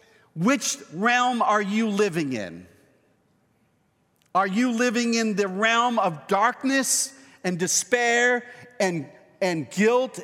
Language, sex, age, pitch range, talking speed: English, male, 50-69, 180-250 Hz, 110 wpm